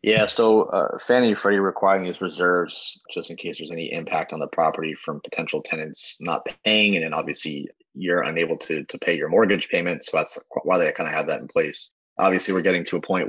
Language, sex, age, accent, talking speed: English, male, 20-39, American, 220 wpm